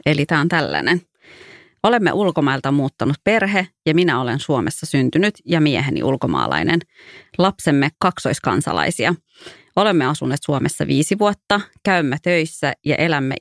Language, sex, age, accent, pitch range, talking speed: English, female, 30-49, Finnish, 140-175 Hz, 120 wpm